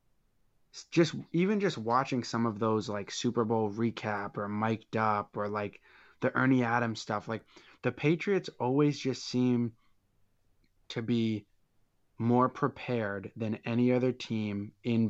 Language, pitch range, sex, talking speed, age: English, 105-120 Hz, male, 140 wpm, 20-39